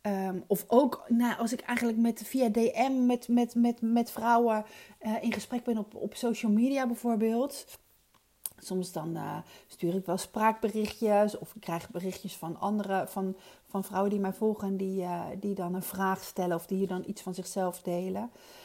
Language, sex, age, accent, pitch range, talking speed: Dutch, female, 40-59, Dutch, 190-240 Hz, 185 wpm